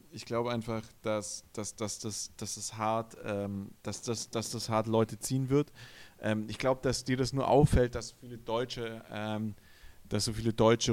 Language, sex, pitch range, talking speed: German, male, 100-120 Hz, 135 wpm